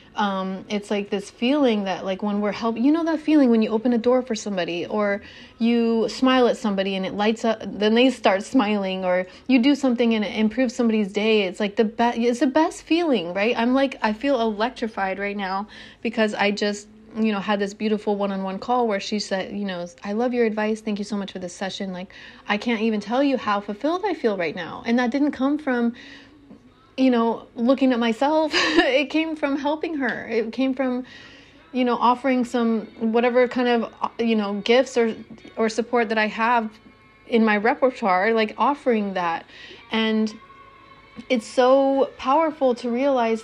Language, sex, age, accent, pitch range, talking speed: English, female, 30-49, American, 210-250 Hz, 200 wpm